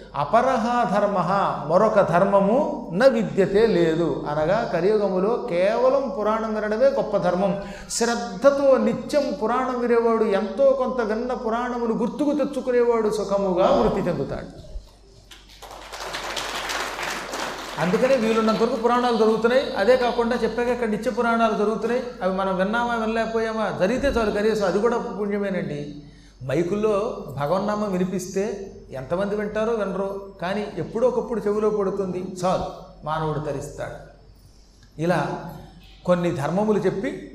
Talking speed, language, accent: 105 wpm, Telugu, native